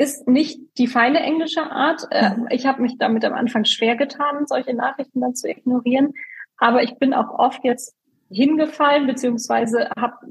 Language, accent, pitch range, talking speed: German, German, 230-255 Hz, 165 wpm